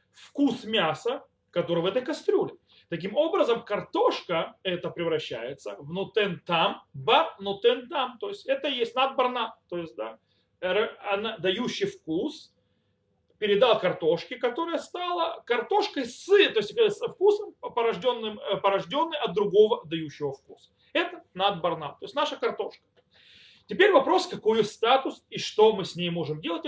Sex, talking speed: male, 130 wpm